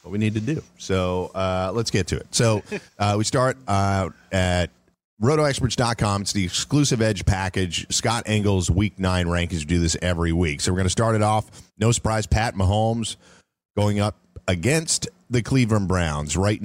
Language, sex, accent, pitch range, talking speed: English, male, American, 85-110 Hz, 180 wpm